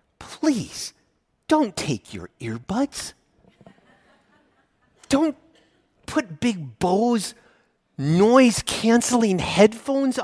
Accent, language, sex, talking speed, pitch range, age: American, English, male, 65 wpm, 145-240 Hz, 30-49